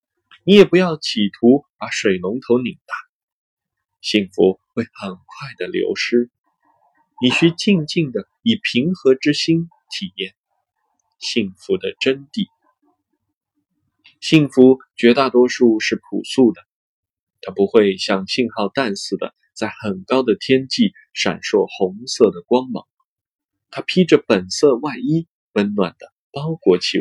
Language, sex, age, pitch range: Chinese, male, 20-39, 115-185 Hz